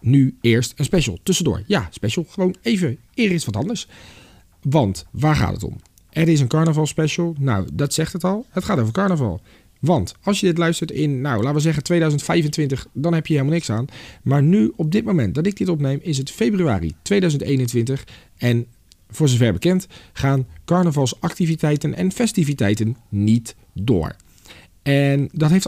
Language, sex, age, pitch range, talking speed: Dutch, male, 40-59, 110-160 Hz, 175 wpm